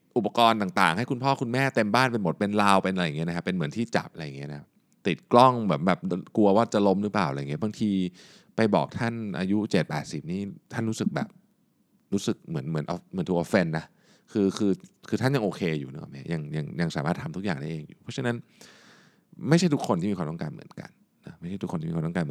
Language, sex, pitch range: Thai, male, 80-130 Hz